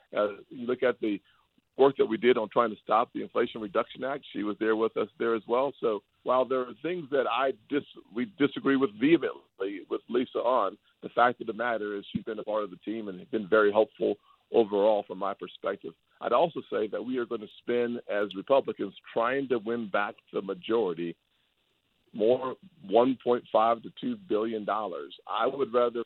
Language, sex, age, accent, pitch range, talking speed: English, male, 50-69, American, 105-130 Hz, 200 wpm